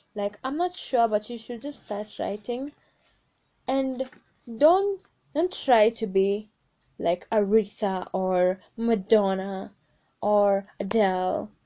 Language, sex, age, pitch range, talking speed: English, female, 10-29, 200-260 Hz, 115 wpm